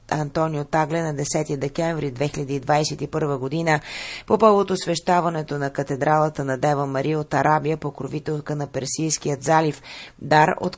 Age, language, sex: 30-49, Bulgarian, female